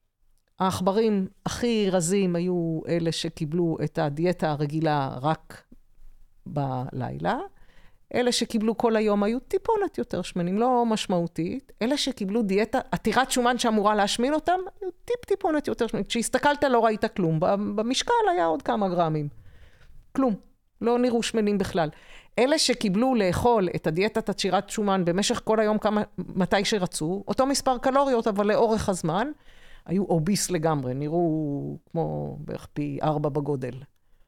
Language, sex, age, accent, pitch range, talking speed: Hebrew, female, 50-69, native, 175-240 Hz, 130 wpm